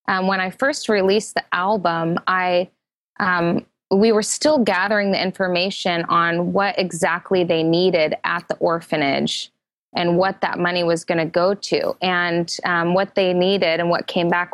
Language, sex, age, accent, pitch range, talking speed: English, female, 20-39, American, 170-200 Hz, 170 wpm